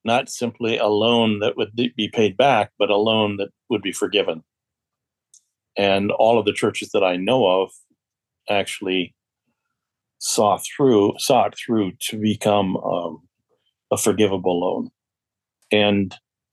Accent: American